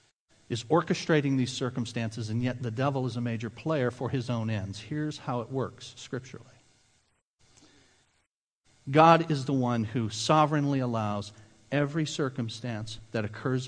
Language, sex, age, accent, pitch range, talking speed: English, male, 50-69, American, 110-150 Hz, 140 wpm